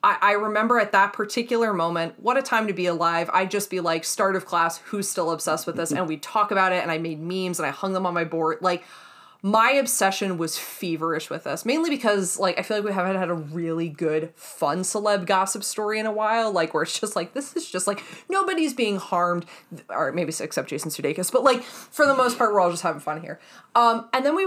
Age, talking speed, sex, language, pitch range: 20-39, 245 wpm, female, English, 175-230 Hz